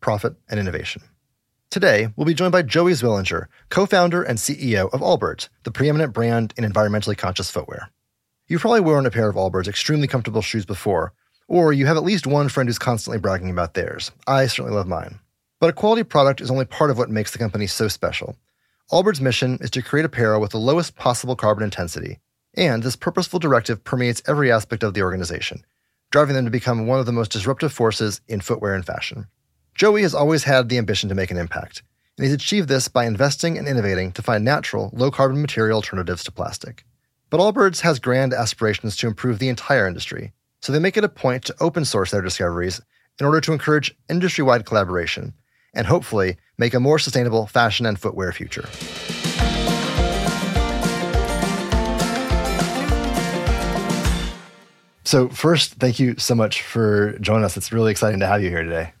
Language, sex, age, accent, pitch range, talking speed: English, male, 30-49, American, 105-140 Hz, 180 wpm